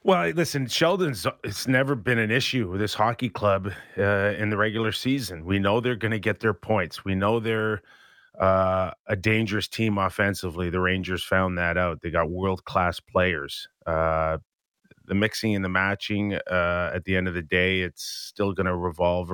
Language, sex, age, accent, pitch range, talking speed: English, male, 30-49, American, 90-110 Hz, 185 wpm